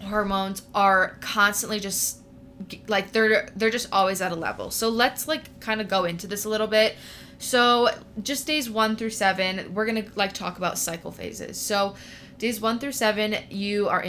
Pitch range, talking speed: 180-215 Hz, 185 wpm